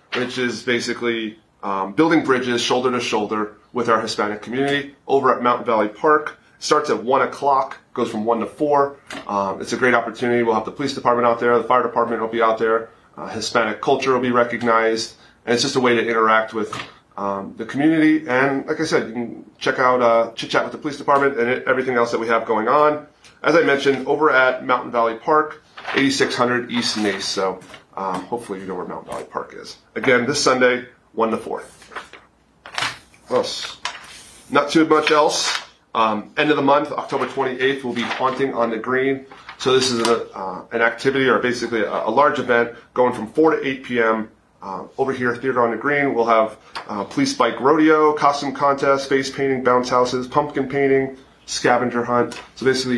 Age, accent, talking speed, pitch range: 30-49, American, 195 wpm, 115-135 Hz